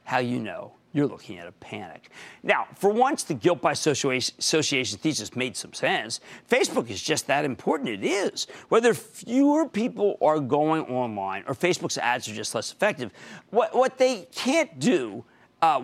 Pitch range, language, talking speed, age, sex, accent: 130-205 Hz, English, 170 wpm, 50-69, male, American